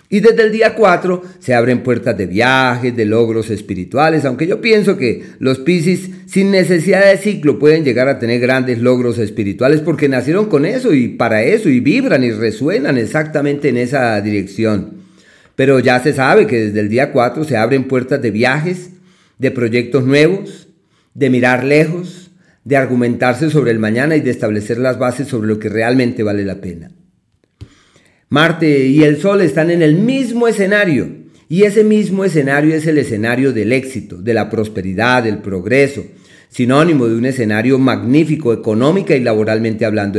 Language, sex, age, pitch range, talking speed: Spanish, male, 40-59, 115-155 Hz, 170 wpm